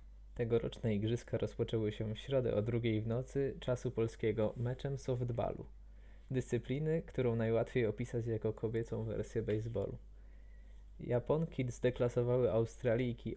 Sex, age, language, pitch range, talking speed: male, 20-39, Polish, 110-125 Hz, 110 wpm